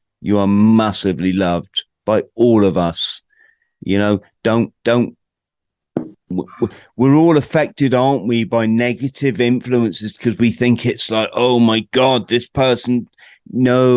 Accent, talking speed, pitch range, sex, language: British, 135 wpm, 100-125 Hz, male, English